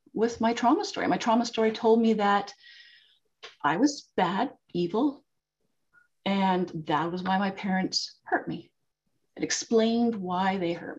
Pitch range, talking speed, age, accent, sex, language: 175-230 Hz, 145 wpm, 30-49, American, female, English